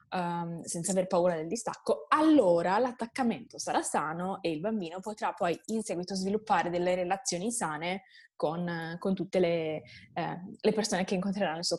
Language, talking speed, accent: Italian, 165 wpm, native